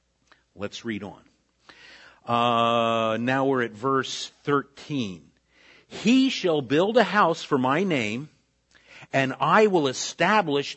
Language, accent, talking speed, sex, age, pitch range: Italian, American, 115 wpm, male, 50-69, 120-165 Hz